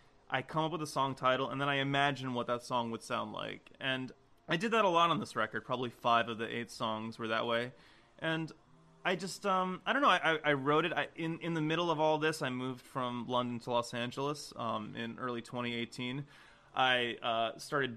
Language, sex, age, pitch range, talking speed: English, male, 20-39, 120-145 Hz, 225 wpm